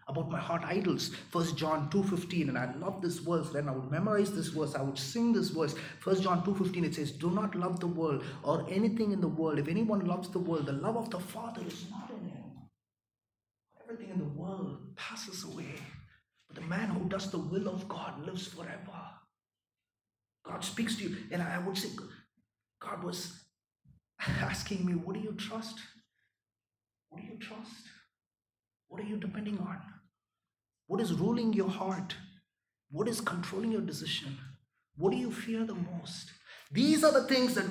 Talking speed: 185 wpm